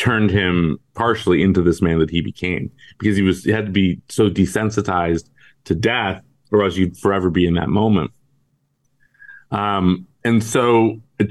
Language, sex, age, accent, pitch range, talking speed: English, male, 30-49, American, 85-110 Hz, 170 wpm